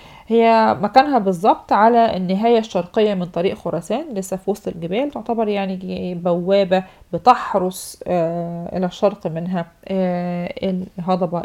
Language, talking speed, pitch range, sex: Arabic, 120 wpm, 175-210 Hz, female